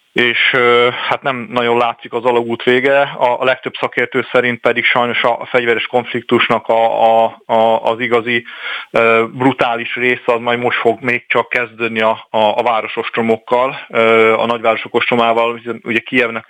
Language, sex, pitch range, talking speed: Hungarian, male, 115-125 Hz, 155 wpm